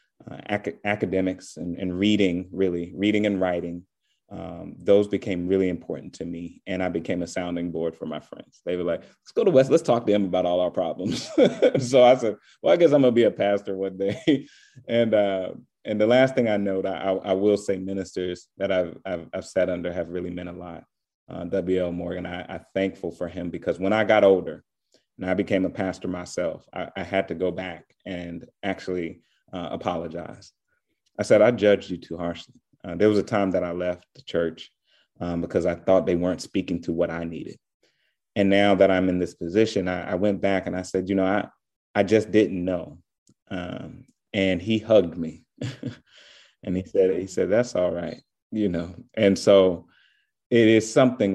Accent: American